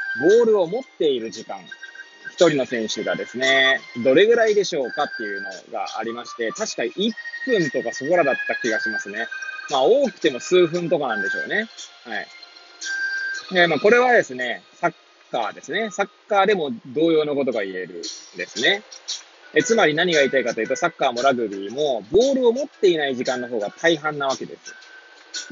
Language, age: Japanese, 20-39